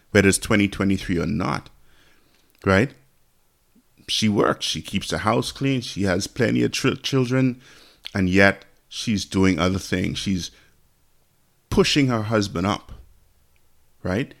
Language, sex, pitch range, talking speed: English, male, 90-110 Hz, 130 wpm